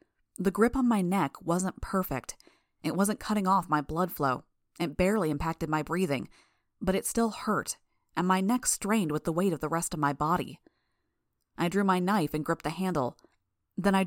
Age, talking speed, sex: 20-39, 195 wpm, female